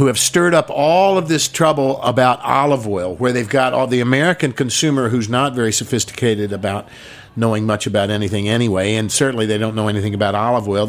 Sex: male